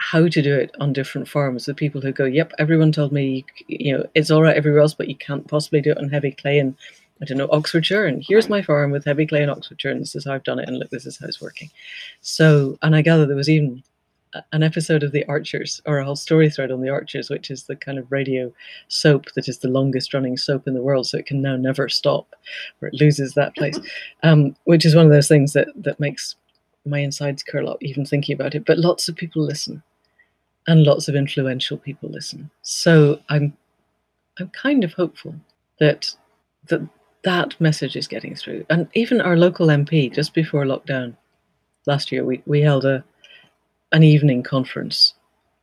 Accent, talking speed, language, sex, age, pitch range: British, 220 wpm, English, female, 40-59, 135-155 Hz